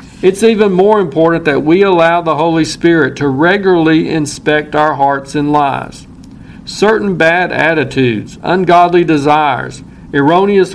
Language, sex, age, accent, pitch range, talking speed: English, male, 50-69, American, 145-180 Hz, 130 wpm